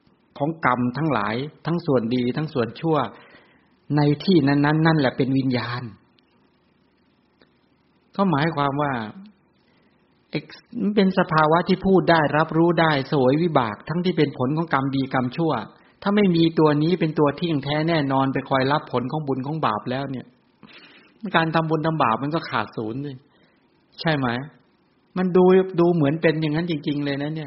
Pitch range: 130-165 Hz